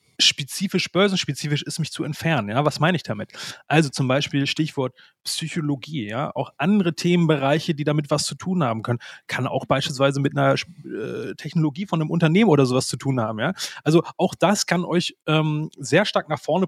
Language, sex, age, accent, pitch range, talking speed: German, male, 30-49, German, 140-170 Hz, 190 wpm